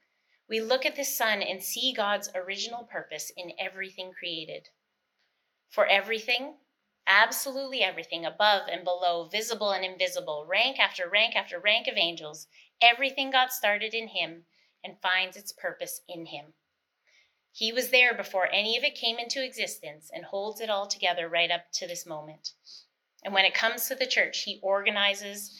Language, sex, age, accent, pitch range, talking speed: English, female, 30-49, American, 180-245 Hz, 165 wpm